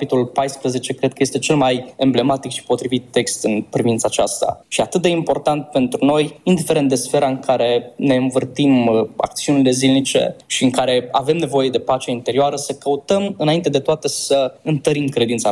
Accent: native